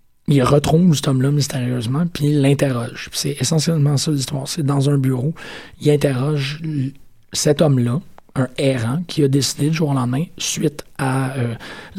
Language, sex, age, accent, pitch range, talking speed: French, male, 30-49, Canadian, 130-160 Hz, 165 wpm